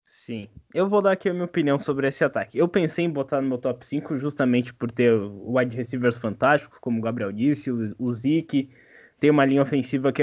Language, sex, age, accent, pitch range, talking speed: Portuguese, male, 20-39, Brazilian, 130-160 Hz, 210 wpm